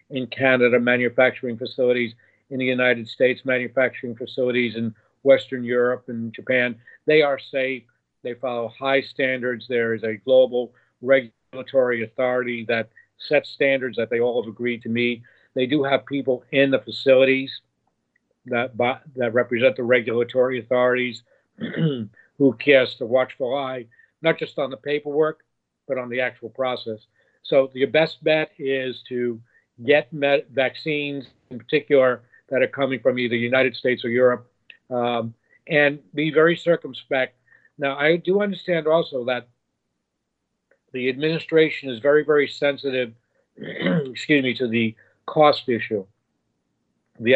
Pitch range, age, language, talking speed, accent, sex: 120-140 Hz, 50-69, English, 140 wpm, American, male